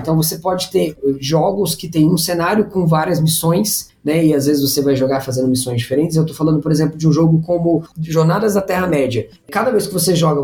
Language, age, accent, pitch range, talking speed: Portuguese, 20-39, Brazilian, 155-215 Hz, 225 wpm